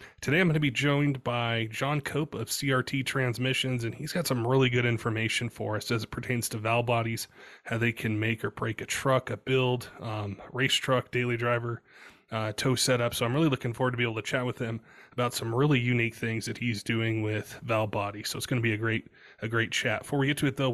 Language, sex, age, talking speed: English, male, 20-39, 245 wpm